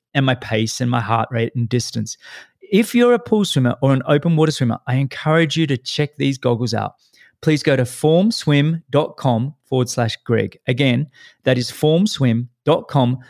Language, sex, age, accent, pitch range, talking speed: English, male, 30-49, Australian, 120-150 Hz, 170 wpm